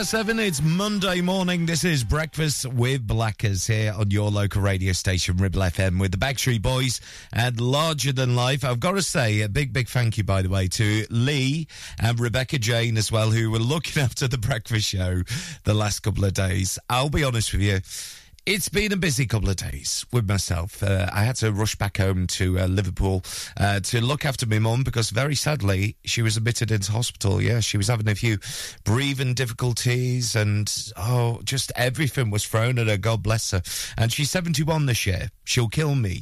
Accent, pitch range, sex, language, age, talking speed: British, 100-130 Hz, male, English, 30-49, 200 wpm